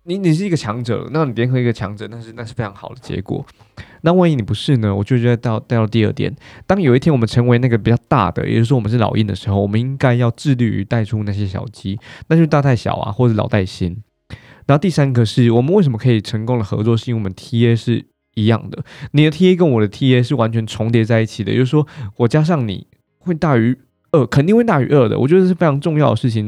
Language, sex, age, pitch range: Chinese, male, 20-39, 110-140 Hz